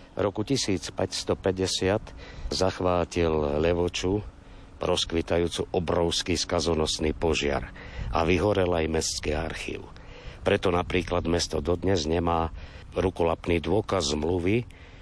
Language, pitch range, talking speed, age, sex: Slovak, 80-95 Hz, 85 wpm, 60-79, male